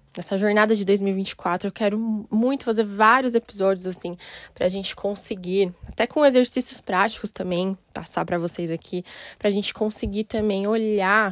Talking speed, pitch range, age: 150 wpm, 195-240 Hz, 10-29